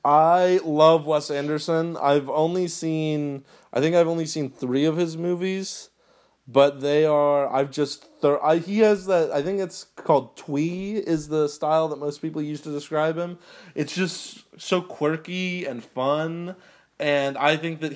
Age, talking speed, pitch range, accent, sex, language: 20-39, 170 wpm, 130-155 Hz, American, male, English